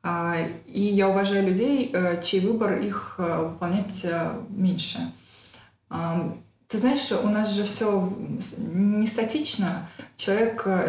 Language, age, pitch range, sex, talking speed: Russian, 20-39, 175-215 Hz, female, 105 wpm